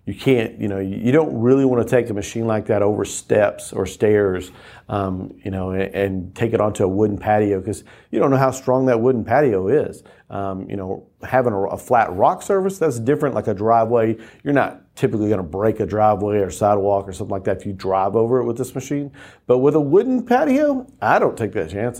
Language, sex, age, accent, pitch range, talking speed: English, male, 40-59, American, 105-130 Hz, 230 wpm